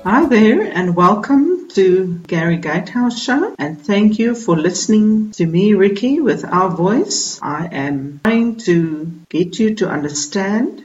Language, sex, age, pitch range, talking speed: English, female, 50-69, 165-210 Hz, 150 wpm